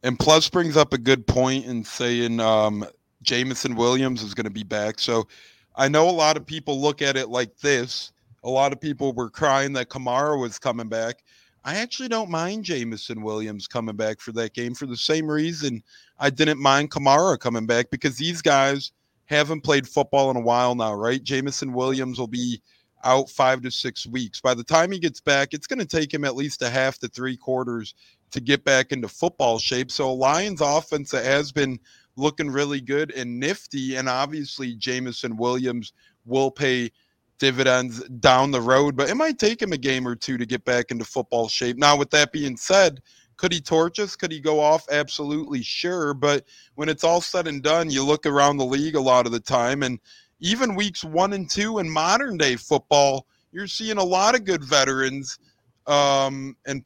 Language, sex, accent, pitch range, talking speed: English, male, American, 125-150 Hz, 200 wpm